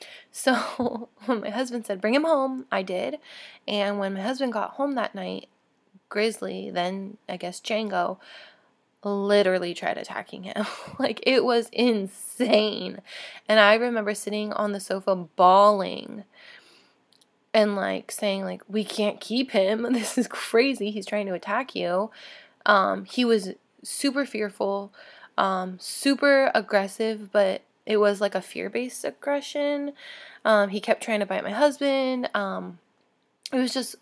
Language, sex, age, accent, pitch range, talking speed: English, female, 20-39, American, 200-250 Hz, 145 wpm